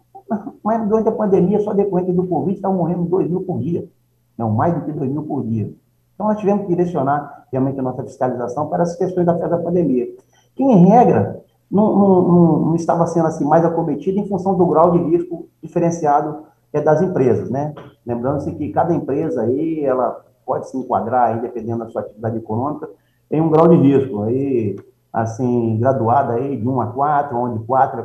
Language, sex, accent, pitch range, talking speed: Portuguese, male, Brazilian, 120-180 Hz, 195 wpm